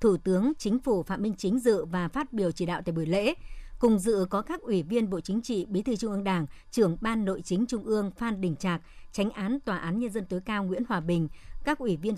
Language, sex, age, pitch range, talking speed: Vietnamese, male, 60-79, 175-225 Hz, 260 wpm